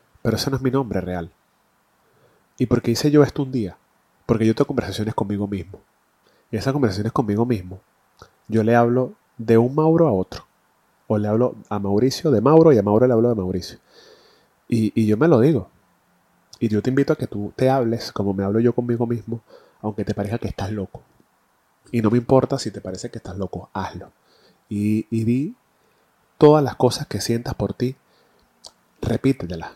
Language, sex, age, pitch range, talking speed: Spanish, male, 30-49, 105-120 Hz, 195 wpm